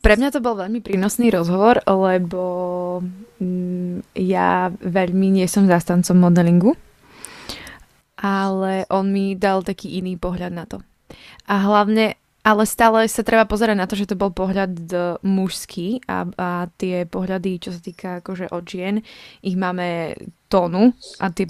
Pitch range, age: 180-205 Hz, 20-39